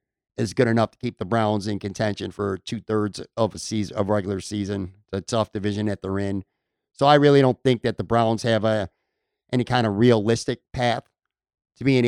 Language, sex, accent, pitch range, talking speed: English, male, American, 110-135 Hz, 210 wpm